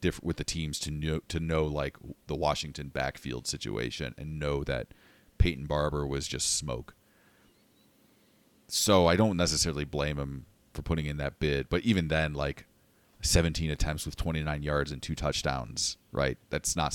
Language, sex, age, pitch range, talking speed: English, male, 30-49, 75-85 Hz, 165 wpm